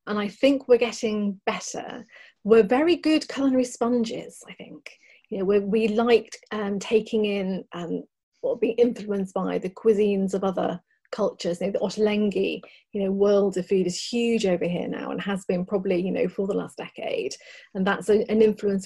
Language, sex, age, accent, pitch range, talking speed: English, female, 30-49, British, 195-235 Hz, 180 wpm